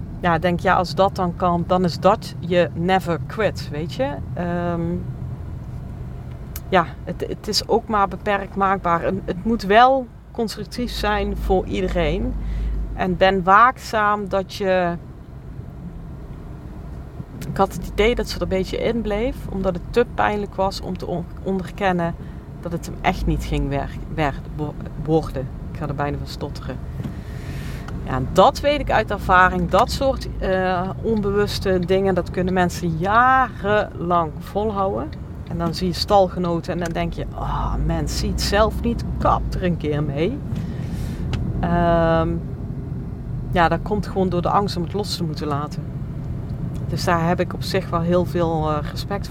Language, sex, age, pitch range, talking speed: Dutch, female, 40-59, 155-195 Hz, 165 wpm